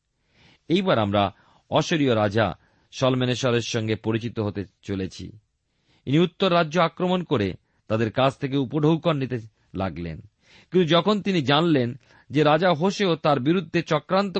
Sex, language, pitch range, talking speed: male, Bengali, 105-150 Hz, 115 wpm